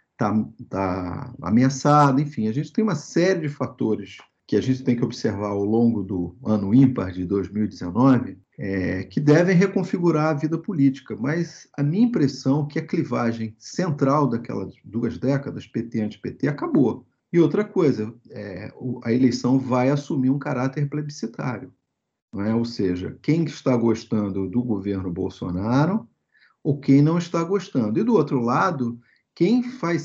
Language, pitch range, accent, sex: Portuguese, 120-160 Hz, Brazilian, male